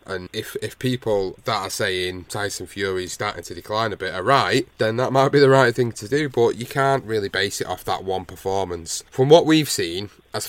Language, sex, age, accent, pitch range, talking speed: English, male, 30-49, British, 95-125 Hz, 230 wpm